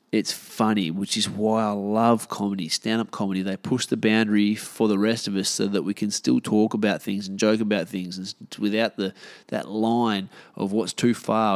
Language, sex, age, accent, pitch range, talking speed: English, male, 20-39, Australian, 100-115 Hz, 215 wpm